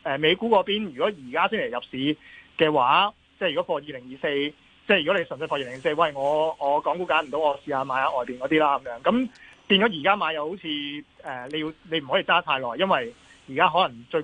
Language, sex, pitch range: Chinese, male, 135-180 Hz